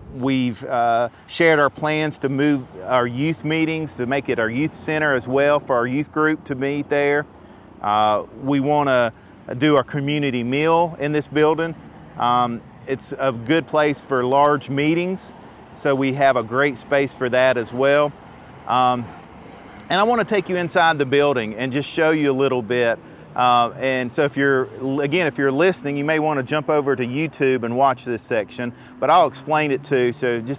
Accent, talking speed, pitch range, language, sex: American, 195 wpm, 125-145 Hz, English, male